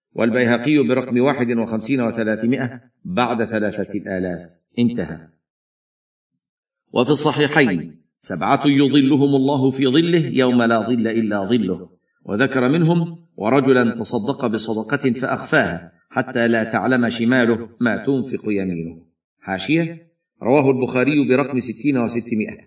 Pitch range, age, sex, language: 115-140 Hz, 50-69, male, Arabic